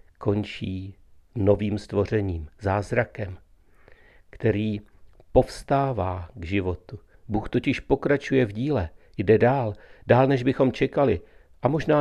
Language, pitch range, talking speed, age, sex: Czech, 90-120 Hz, 105 wpm, 50-69, male